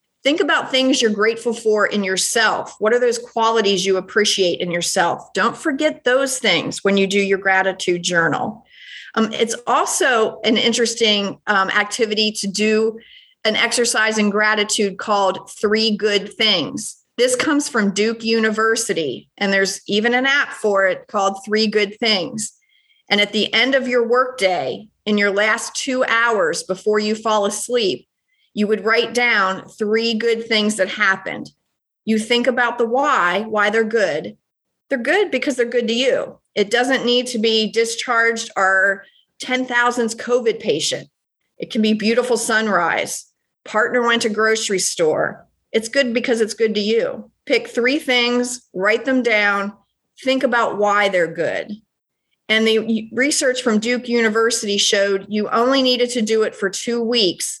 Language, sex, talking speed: English, female, 160 wpm